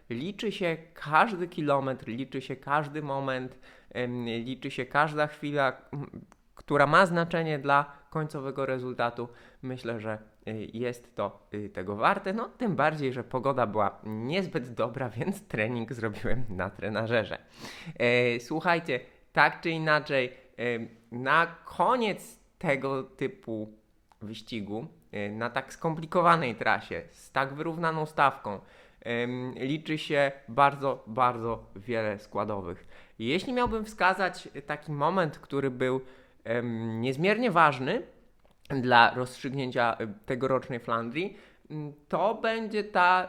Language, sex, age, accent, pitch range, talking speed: Polish, male, 20-39, native, 120-165 Hz, 105 wpm